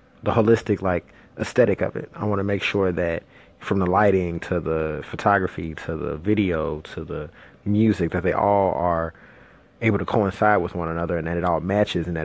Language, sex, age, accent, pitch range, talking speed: English, male, 20-39, American, 90-105 Hz, 200 wpm